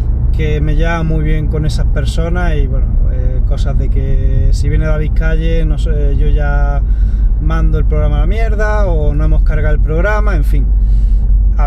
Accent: Spanish